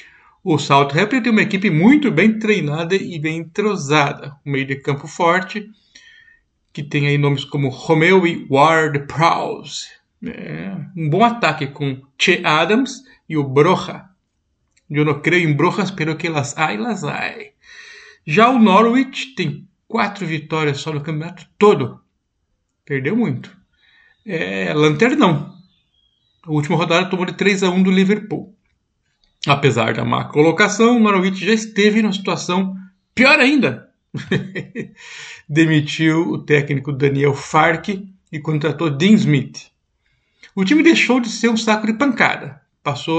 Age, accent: 50-69, Brazilian